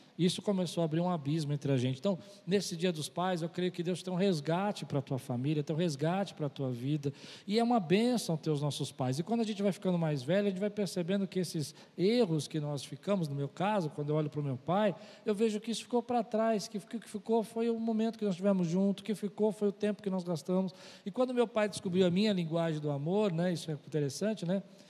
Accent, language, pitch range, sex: Brazilian, Portuguese, 155-200 Hz, male